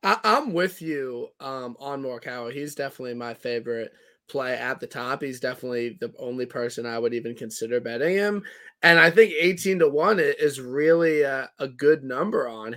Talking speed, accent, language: 180 wpm, American, English